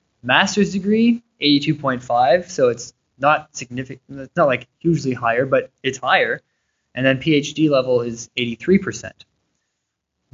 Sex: male